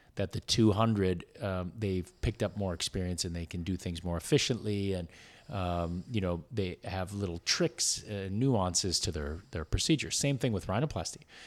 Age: 30-49